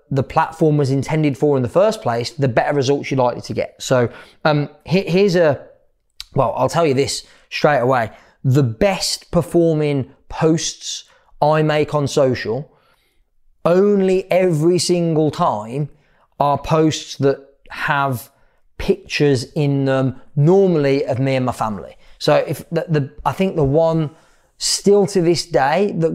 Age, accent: 20-39, British